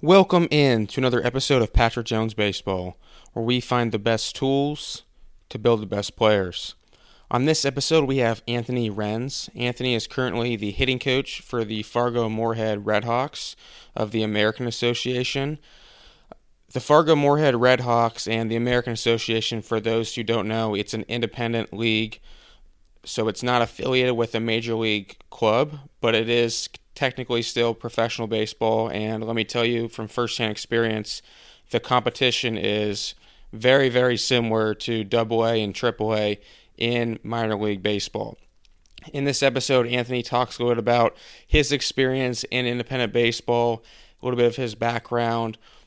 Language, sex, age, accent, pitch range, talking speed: English, male, 20-39, American, 110-125 Hz, 155 wpm